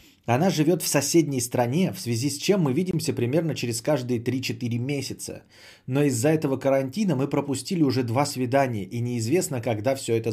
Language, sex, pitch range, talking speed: Bulgarian, male, 115-155 Hz, 175 wpm